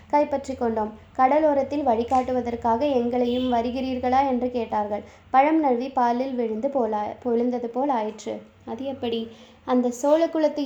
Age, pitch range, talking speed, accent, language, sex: 20-39, 235-275 Hz, 100 wpm, native, Tamil, female